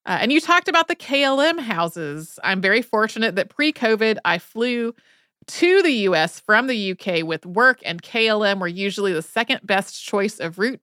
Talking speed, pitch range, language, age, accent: 185 wpm, 185-235 Hz, English, 30-49, American